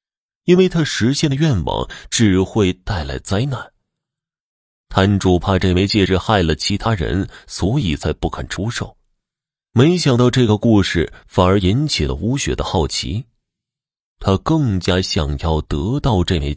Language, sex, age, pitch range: Chinese, male, 30-49, 85-115 Hz